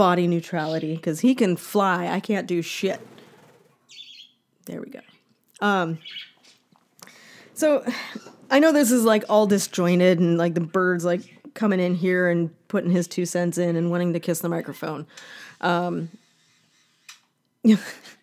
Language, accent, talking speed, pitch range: English, American, 140 wpm, 170-235 Hz